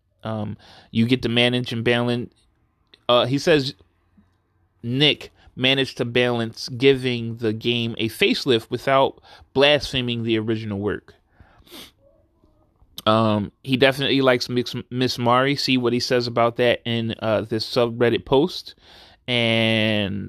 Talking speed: 125 wpm